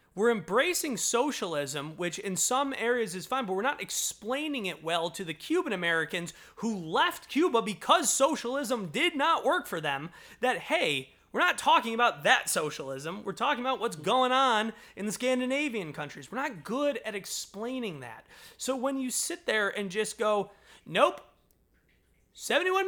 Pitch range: 180-275 Hz